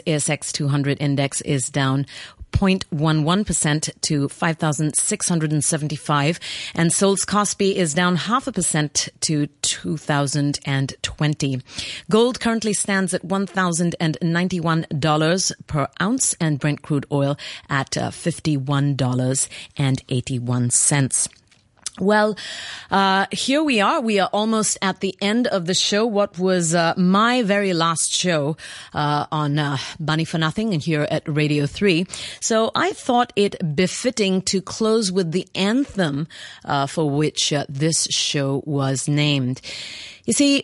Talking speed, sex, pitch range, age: 120 wpm, female, 145-195 Hz, 30-49